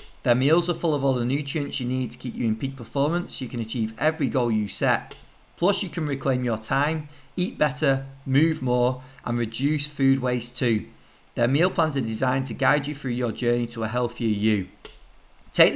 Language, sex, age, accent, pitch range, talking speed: English, male, 40-59, British, 120-150 Hz, 205 wpm